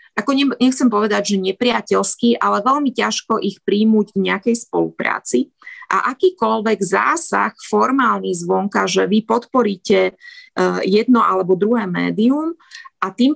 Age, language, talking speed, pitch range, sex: 30-49, Slovak, 120 wpm, 185-220 Hz, female